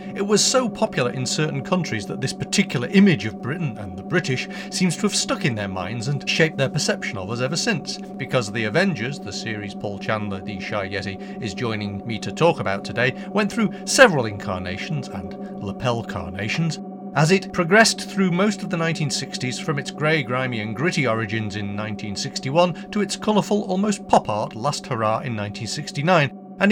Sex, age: male, 40-59